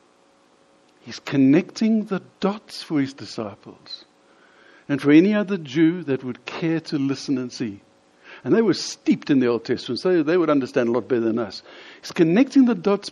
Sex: male